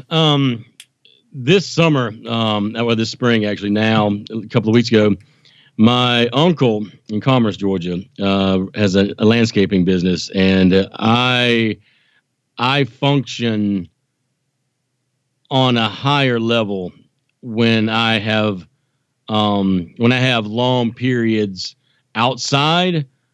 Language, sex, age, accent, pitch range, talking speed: English, male, 40-59, American, 115-140 Hz, 110 wpm